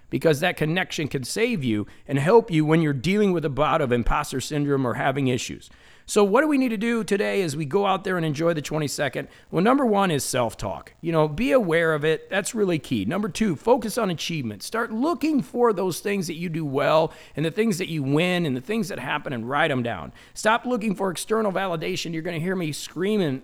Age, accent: 40-59, American